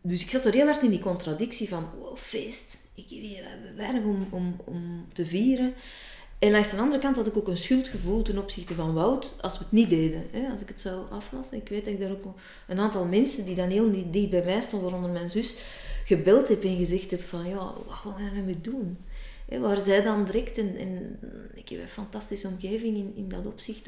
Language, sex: Dutch, female